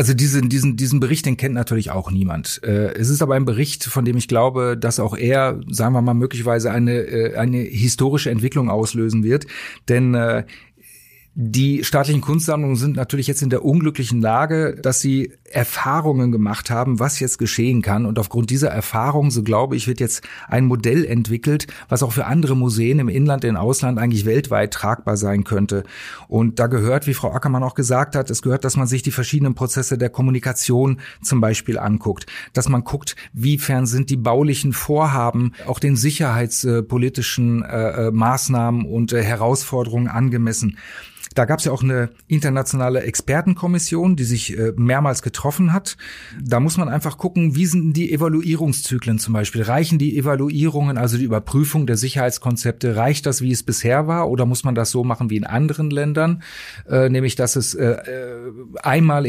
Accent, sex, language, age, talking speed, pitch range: German, male, German, 40-59, 175 wpm, 120-140 Hz